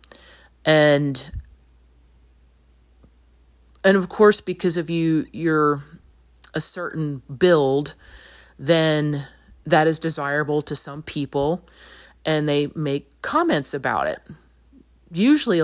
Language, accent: English, American